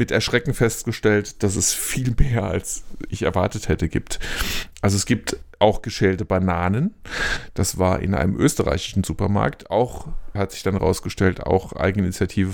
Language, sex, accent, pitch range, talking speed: German, male, German, 95-110 Hz, 150 wpm